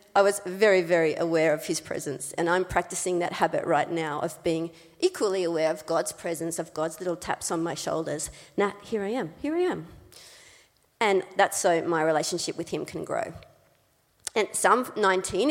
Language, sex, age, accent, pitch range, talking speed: English, female, 40-59, Australian, 170-210 Hz, 185 wpm